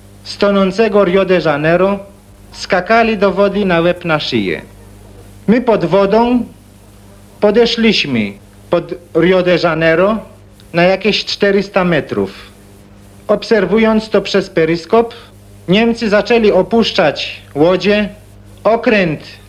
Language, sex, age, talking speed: Polish, male, 50-69, 100 wpm